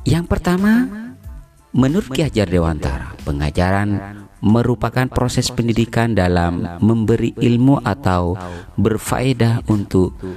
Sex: male